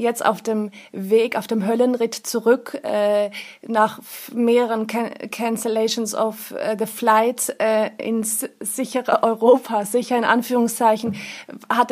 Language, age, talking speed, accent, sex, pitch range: German, 30-49, 130 wpm, German, female, 210-240 Hz